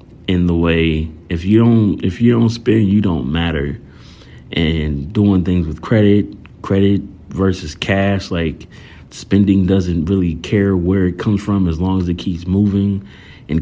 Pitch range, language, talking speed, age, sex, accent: 85-100 Hz, English, 165 wpm, 30-49, male, American